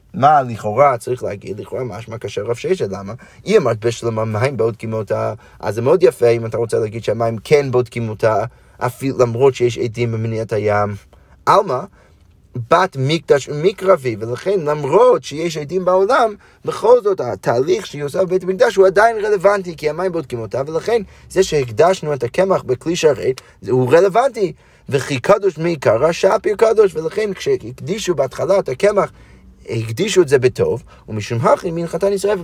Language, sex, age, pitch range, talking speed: Hebrew, male, 30-49, 125-195 Hz, 150 wpm